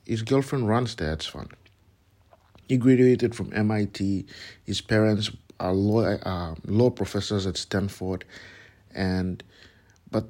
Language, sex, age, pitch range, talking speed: English, male, 50-69, 95-110 Hz, 120 wpm